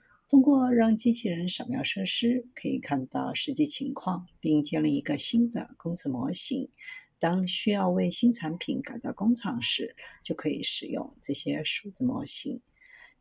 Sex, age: female, 50-69